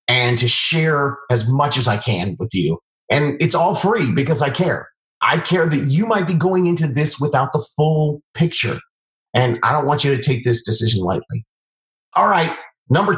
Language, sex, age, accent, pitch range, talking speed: English, male, 30-49, American, 120-150 Hz, 195 wpm